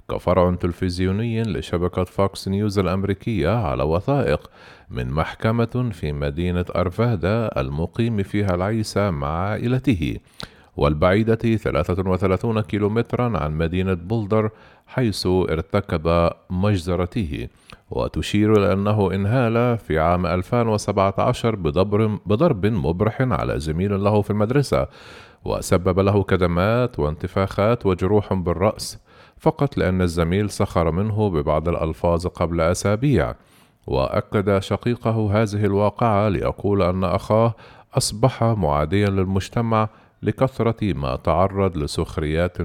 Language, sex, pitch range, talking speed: Arabic, male, 90-110 Hz, 100 wpm